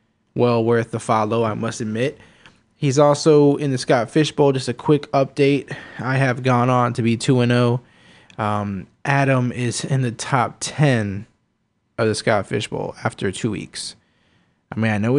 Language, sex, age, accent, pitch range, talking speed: English, male, 20-39, American, 110-130 Hz, 165 wpm